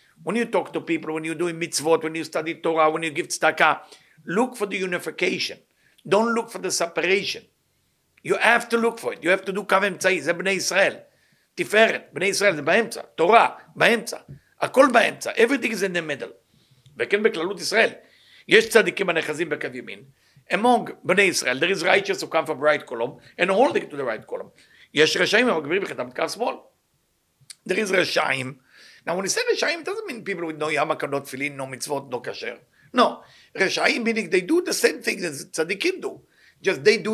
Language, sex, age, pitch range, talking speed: English, male, 50-69, 160-230 Hz, 190 wpm